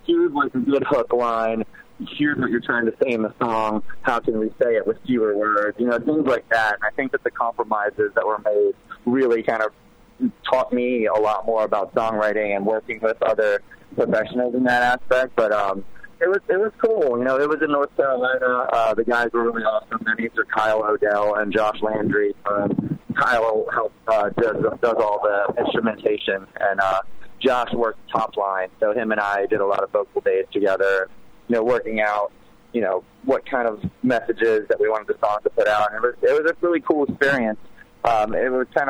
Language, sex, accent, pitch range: English, male, American, 110-140 Hz